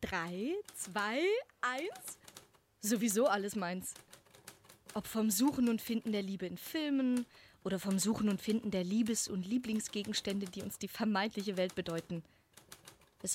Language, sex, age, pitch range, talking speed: German, female, 20-39, 195-250 Hz, 140 wpm